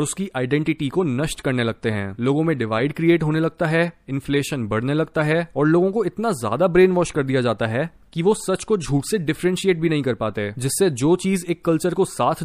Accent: native